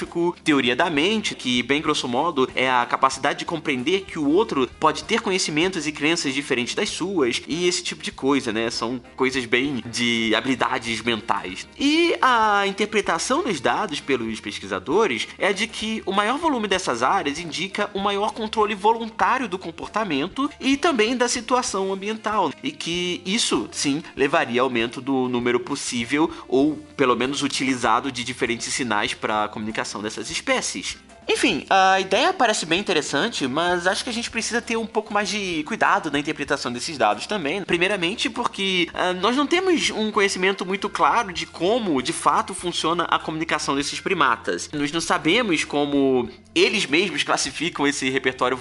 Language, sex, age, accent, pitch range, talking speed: Portuguese, male, 20-39, Brazilian, 140-215 Hz, 165 wpm